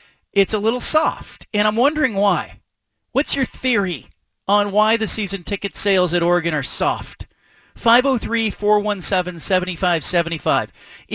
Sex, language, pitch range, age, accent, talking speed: male, English, 175-220 Hz, 40-59, American, 120 wpm